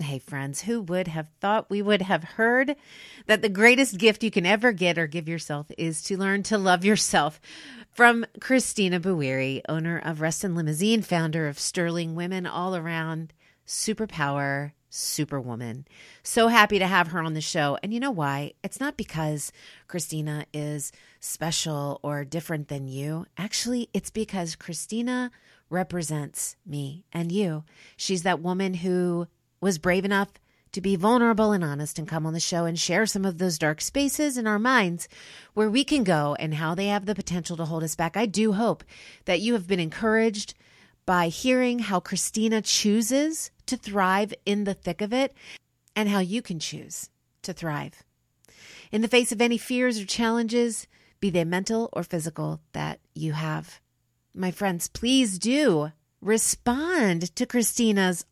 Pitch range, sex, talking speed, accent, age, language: 160-220 Hz, female, 170 wpm, American, 40-59, English